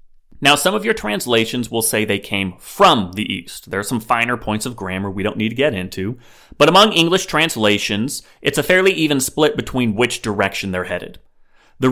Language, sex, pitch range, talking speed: English, male, 105-135 Hz, 200 wpm